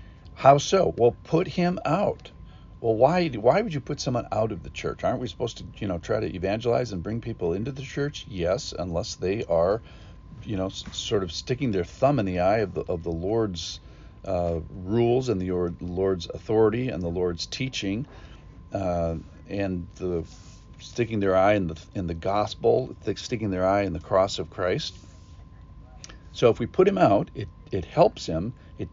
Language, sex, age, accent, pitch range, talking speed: English, male, 50-69, American, 85-125 Hz, 195 wpm